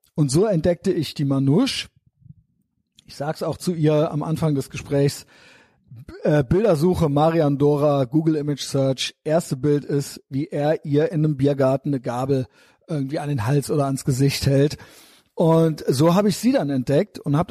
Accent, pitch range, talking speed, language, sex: German, 140-165 Hz, 175 wpm, German, male